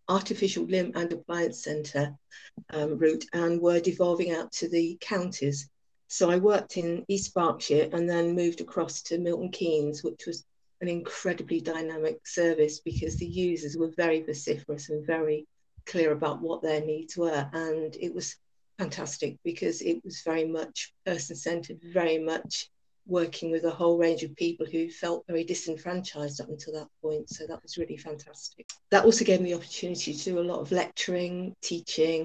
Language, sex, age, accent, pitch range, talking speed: English, female, 50-69, British, 155-180 Hz, 170 wpm